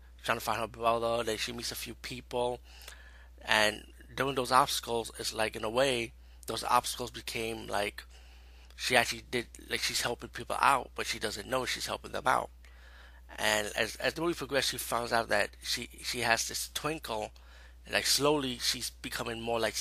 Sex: male